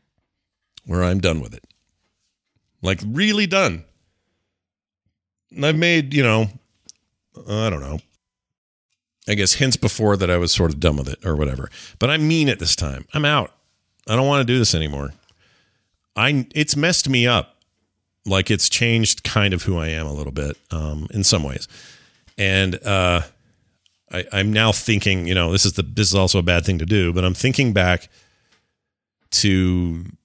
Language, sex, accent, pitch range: English, male, American, 85-110 Hz